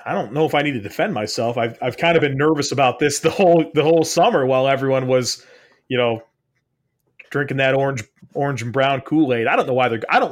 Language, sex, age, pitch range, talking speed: English, male, 30-49, 130-180 Hz, 240 wpm